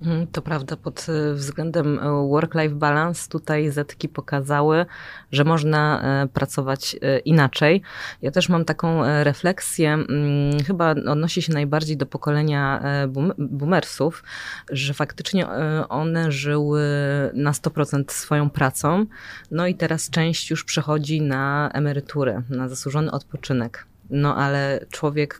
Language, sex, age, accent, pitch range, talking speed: Polish, female, 20-39, native, 140-160 Hz, 110 wpm